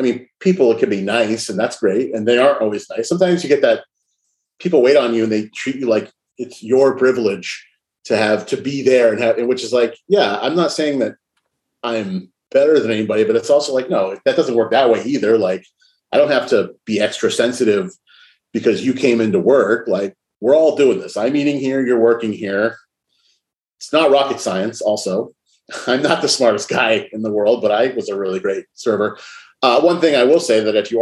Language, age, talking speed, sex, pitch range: English, 30-49, 220 wpm, male, 110-145 Hz